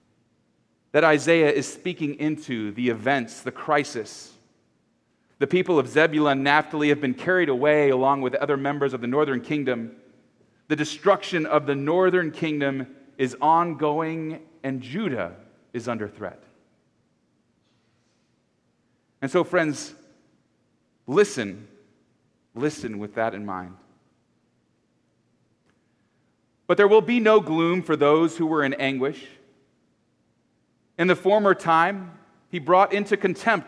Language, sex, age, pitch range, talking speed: English, male, 30-49, 130-165 Hz, 125 wpm